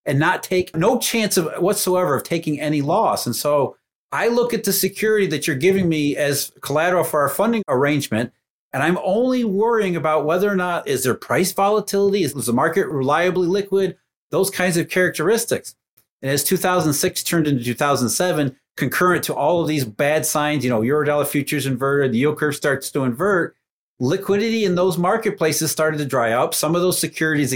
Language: English